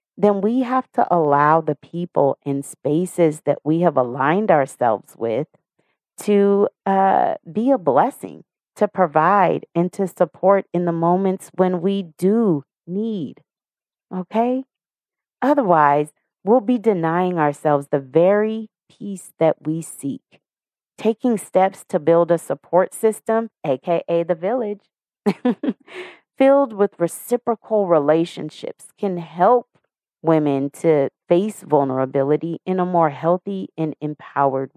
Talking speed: 120 wpm